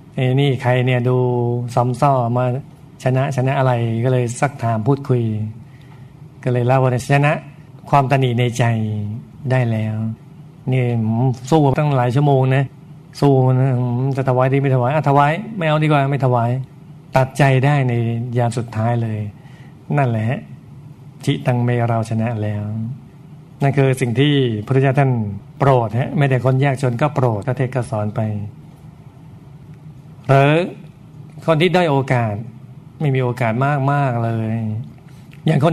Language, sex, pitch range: Thai, male, 125-145 Hz